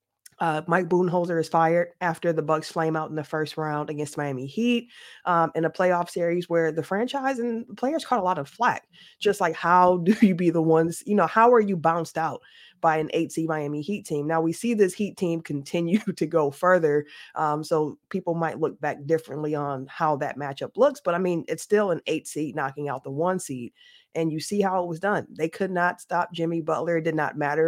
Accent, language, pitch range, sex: American, English, 155-190 Hz, female